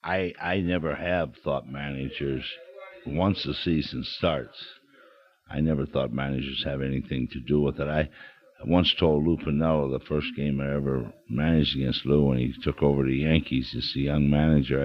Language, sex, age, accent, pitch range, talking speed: English, male, 60-79, American, 70-80 Hz, 175 wpm